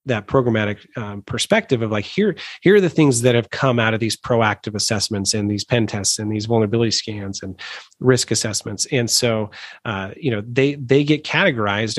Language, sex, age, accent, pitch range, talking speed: English, male, 30-49, American, 110-135 Hz, 195 wpm